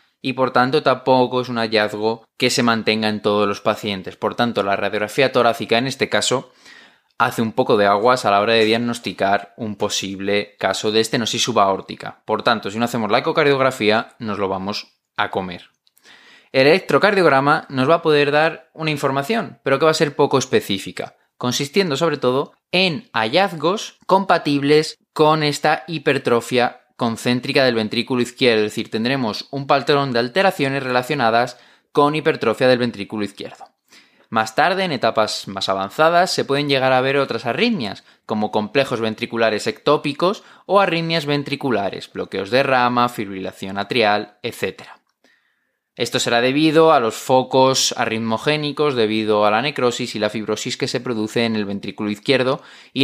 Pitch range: 110-140 Hz